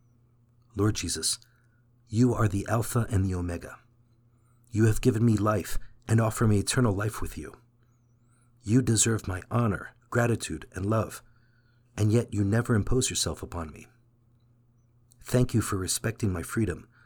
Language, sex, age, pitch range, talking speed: English, male, 50-69, 105-120 Hz, 150 wpm